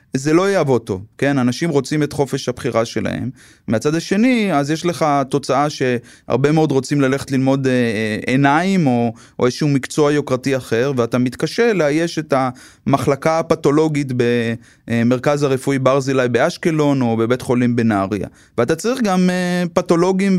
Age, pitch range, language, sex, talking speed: 20-39, 125-160 Hz, Hebrew, male, 140 wpm